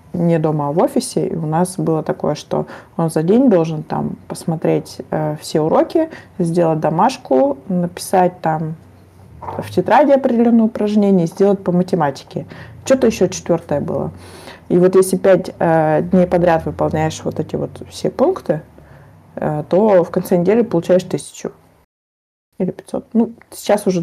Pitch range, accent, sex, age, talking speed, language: 160-190 Hz, native, female, 20-39, 140 wpm, Russian